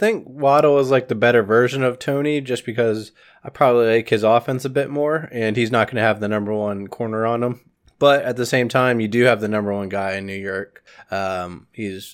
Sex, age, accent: male, 20-39, American